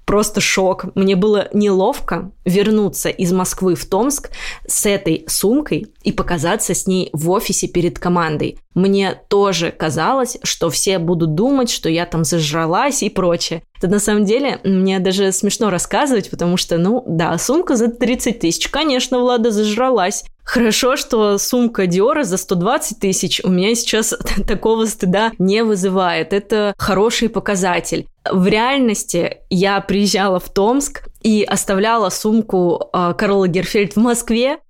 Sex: female